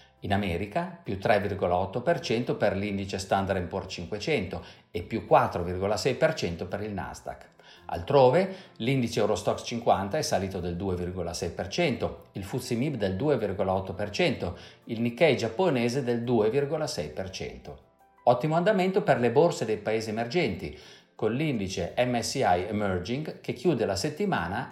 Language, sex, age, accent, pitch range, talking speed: Italian, male, 50-69, native, 90-145 Hz, 115 wpm